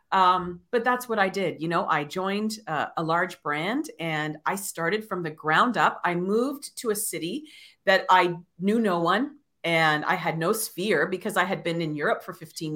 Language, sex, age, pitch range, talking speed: English, female, 40-59, 170-225 Hz, 205 wpm